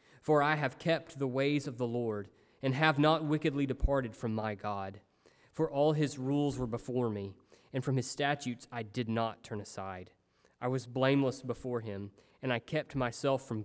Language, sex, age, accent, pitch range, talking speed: English, male, 20-39, American, 110-145 Hz, 190 wpm